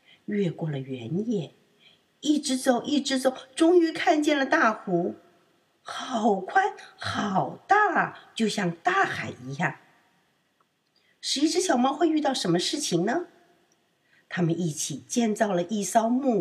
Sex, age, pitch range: female, 50-69, 175-285 Hz